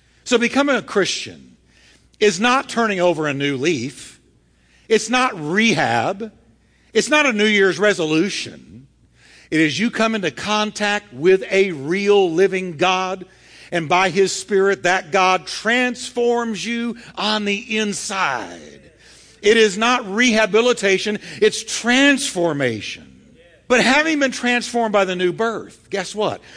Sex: male